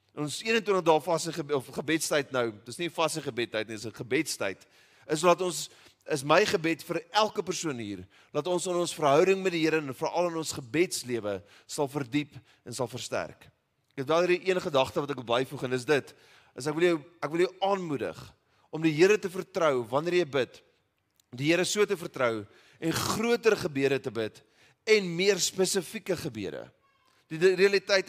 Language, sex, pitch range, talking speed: English, male, 140-185 Hz, 175 wpm